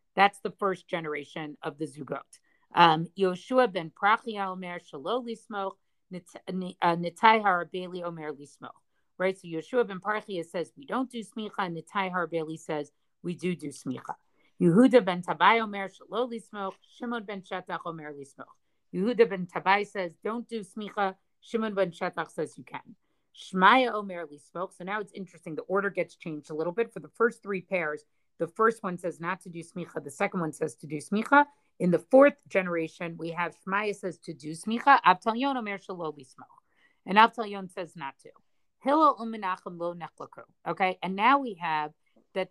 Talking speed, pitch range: 170 wpm, 165-205 Hz